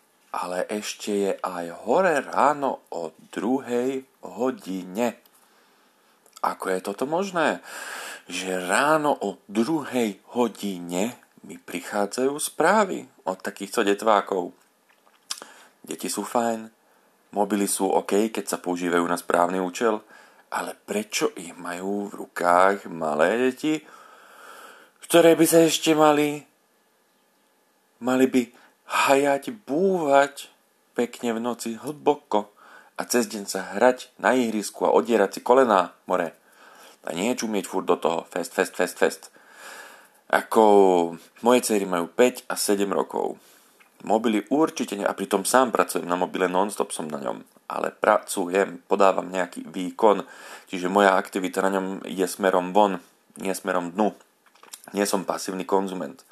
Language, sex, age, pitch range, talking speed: Slovak, male, 40-59, 95-125 Hz, 130 wpm